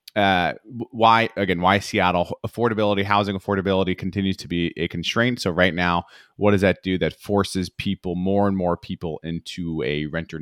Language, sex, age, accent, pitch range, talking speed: English, male, 30-49, American, 85-105 Hz, 175 wpm